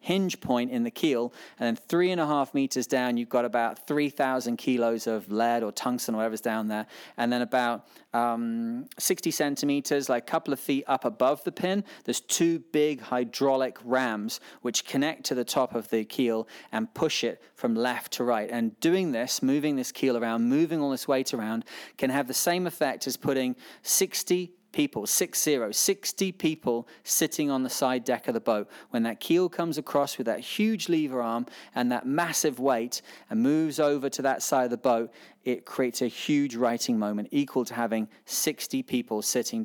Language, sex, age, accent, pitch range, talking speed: English, male, 30-49, British, 120-160 Hz, 195 wpm